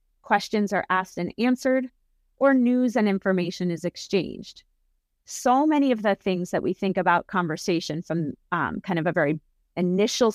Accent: American